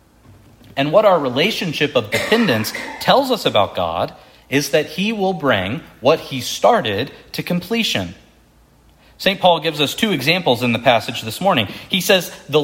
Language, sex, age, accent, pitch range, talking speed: English, male, 40-59, American, 120-185 Hz, 160 wpm